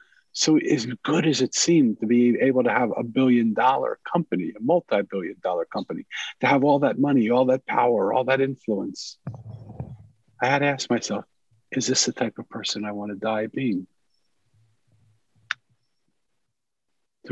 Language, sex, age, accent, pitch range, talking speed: English, male, 50-69, American, 105-125 Hz, 160 wpm